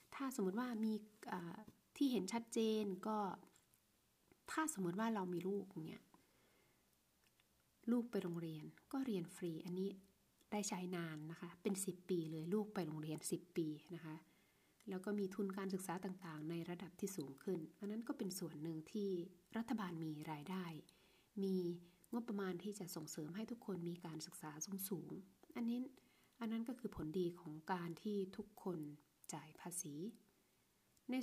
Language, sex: Thai, female